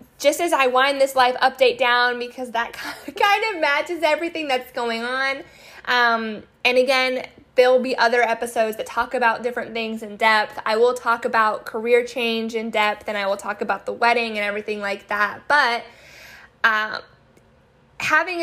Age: 10-29